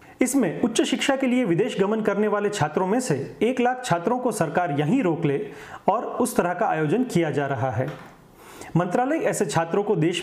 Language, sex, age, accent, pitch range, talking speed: Hindi, male, 40-59, native, 160-220 Hz, 200 wpm